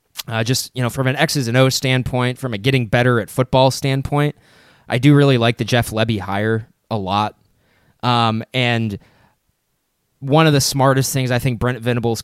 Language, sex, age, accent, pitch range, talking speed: English, male, 20-39, American, 110-135 Hz, 185 wpm